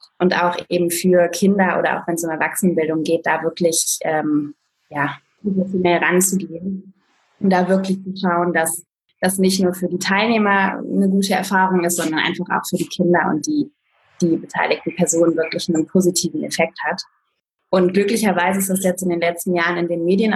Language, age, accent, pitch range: German, 20-39, German, 170-195 Hz